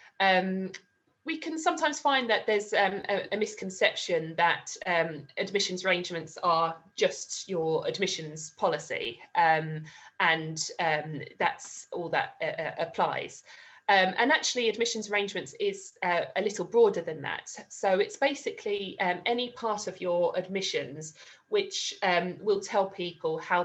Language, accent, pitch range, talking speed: English, British, 160-205 Hz, 140 wpm